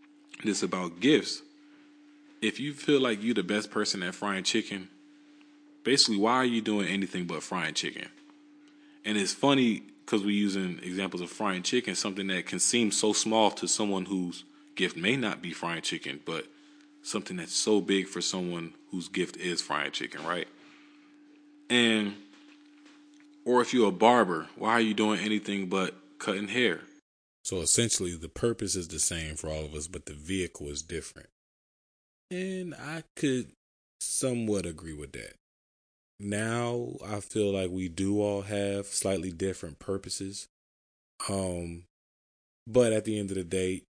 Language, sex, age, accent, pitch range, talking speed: English, male, 20-39, American, 85-115 Hz, 160 wpm